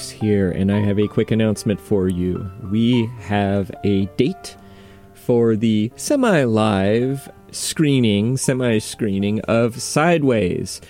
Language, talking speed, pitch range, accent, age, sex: English, 110 wpm, 100-125 Hz, American, 30-49, male